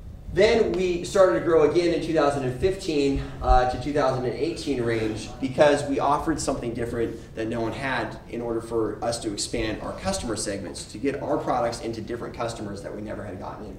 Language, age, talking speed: English, 20-39, 185 wpm